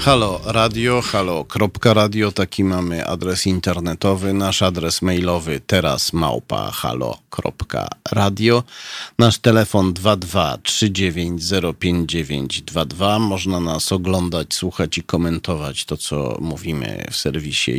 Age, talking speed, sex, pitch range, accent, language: 40-59, 100 wpm, male, 85-100 Hz, native, Polish